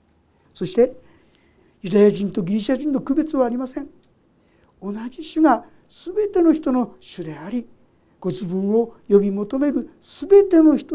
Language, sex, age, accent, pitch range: Japanese, male, 50-69, native, 200-295 Hz